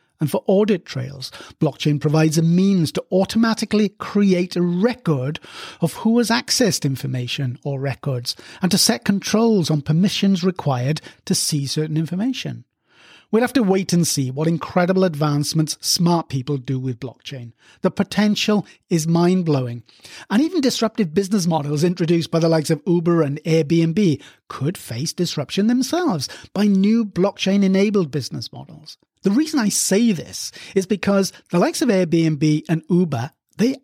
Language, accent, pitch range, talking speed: English, British, 150-200 Hz, 150 wpm